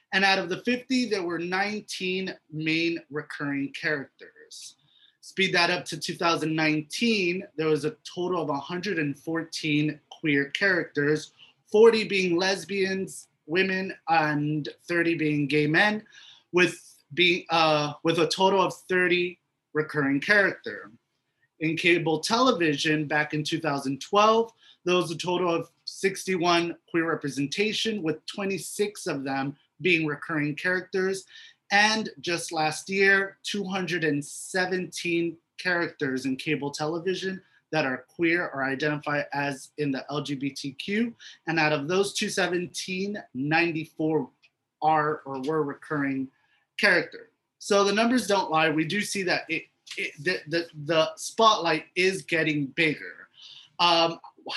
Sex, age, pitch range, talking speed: male, 30-49, 150-190 Hz, 125 wpm